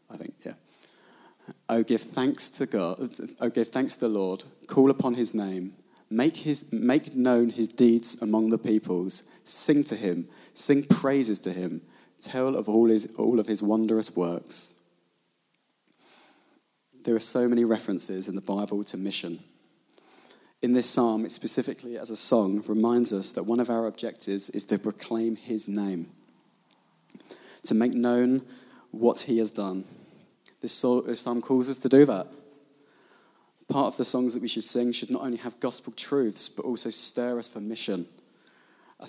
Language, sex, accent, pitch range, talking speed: English, male, British, 105-120 Hz, 165 wpm